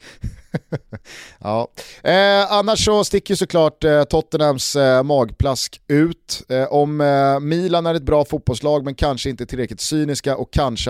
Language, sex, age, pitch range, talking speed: Swedish, male, 30-49, 115-155 Hz, 145 wpm